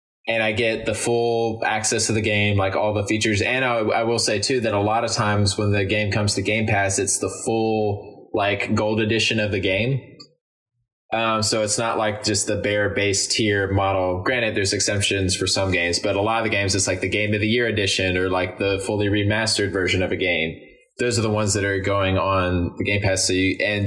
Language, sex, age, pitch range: English, male, 20-39, 100-110 Hz